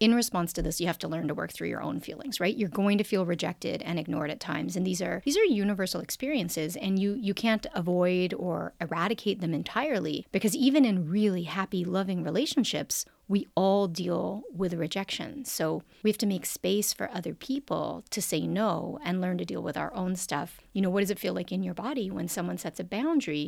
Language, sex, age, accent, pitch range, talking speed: English, female, 30-49, American, 175-215 Hz, 220 wpm